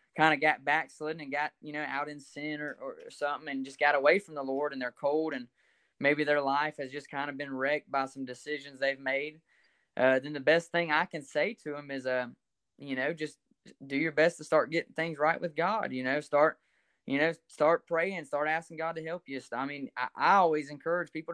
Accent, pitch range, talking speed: American, 135-160 Hz, 235 wpm